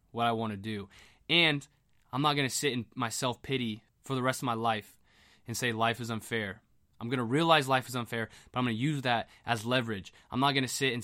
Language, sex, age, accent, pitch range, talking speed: English, male, 20-39, American, 115-140 Hz, 250 wpm